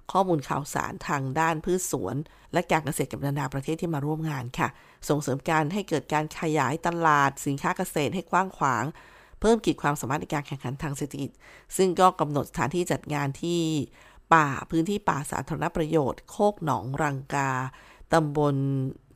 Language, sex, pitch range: Thai, female, 140-170 Hz